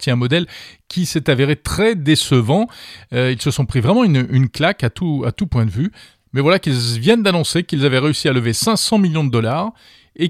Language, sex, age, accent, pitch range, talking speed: French, male, 40-59, French, 115-165 Hz, 220 wpm